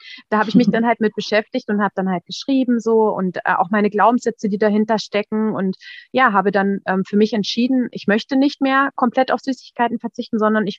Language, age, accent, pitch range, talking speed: German, 30-49, German, 205-245 Hz, 220 wpm